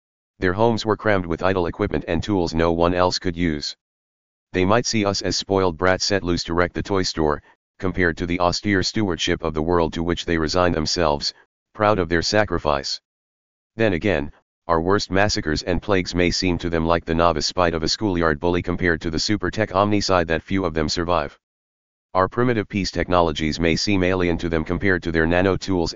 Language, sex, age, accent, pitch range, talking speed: English, male, 40-59, American, 80-95 Hz, 200 wpm